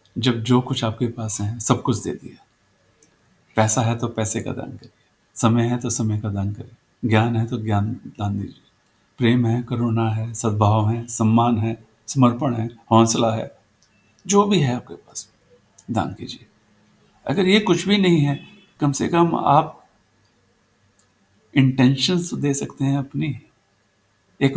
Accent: native